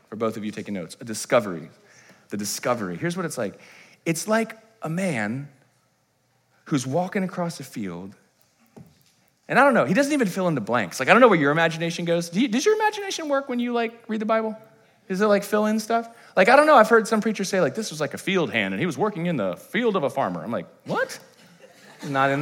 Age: 30-49